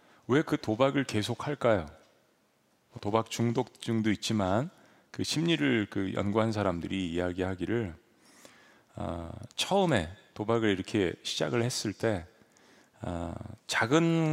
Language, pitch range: Korean, 100-145 Hz